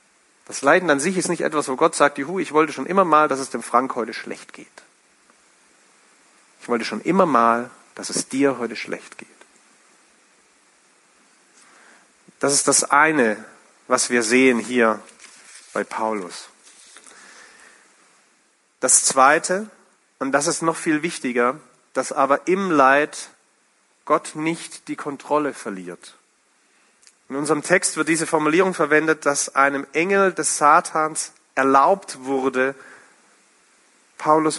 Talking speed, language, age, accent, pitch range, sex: 130 wpm, German, 40-59, German, 130-165 Hz, male